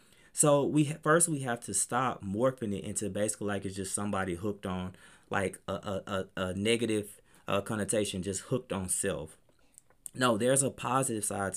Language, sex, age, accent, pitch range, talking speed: English, male, 20-39, American, 95-125 Hz, 175 wpm